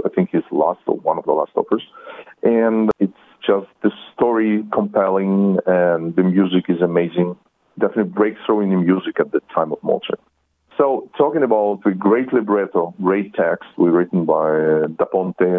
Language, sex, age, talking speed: Hebrew, male, 40-59, 175 wpm